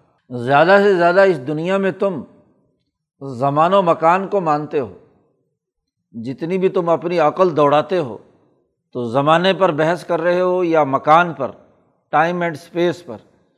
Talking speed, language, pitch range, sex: 150 wpm, Urdu, 150-185 Hz, male